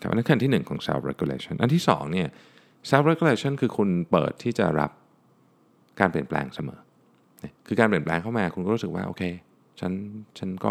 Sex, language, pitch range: male, Thai, 80-120 Hz